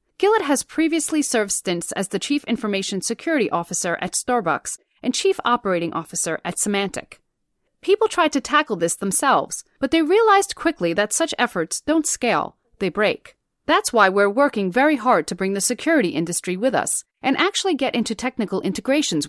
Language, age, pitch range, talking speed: English, 40-59, 190-295 Hz, 170 wpm